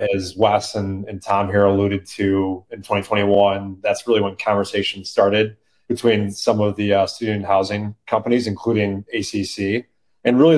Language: English